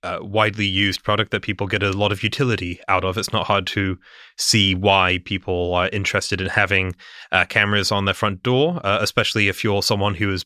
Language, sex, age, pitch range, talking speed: English, male, 20-39, 100-120 Hz, 210 wpm